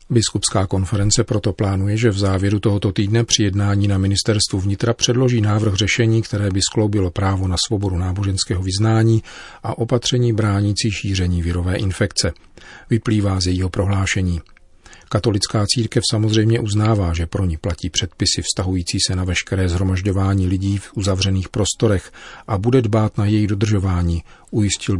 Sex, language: male, Czech